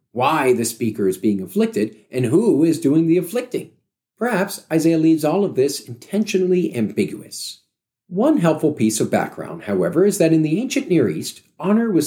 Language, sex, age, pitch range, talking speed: English, male, 40-59, 120-195 Hz, 175 wpm